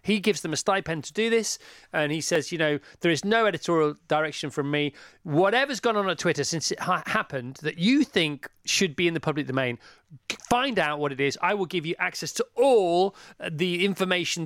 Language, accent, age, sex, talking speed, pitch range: English, British, 30-49, male, 215 wpm, 160-215 Hz